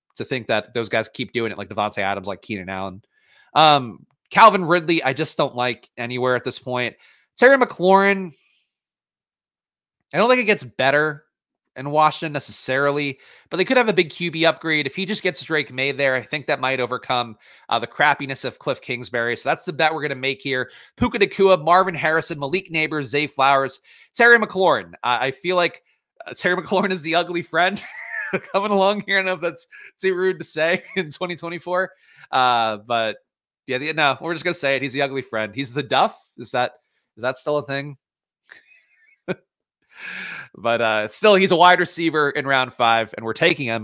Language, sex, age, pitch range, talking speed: English, male, 30-49, 125-180 Hz, 190 wpm